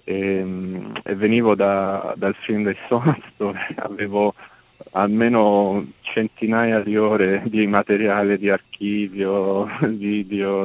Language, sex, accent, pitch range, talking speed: Italian, male, native, 95-110 Hz, 105 wpm